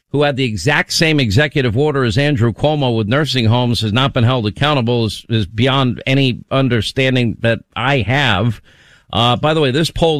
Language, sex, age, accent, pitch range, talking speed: English, male, 50-69, American, 120-150 Hz, 190 wpm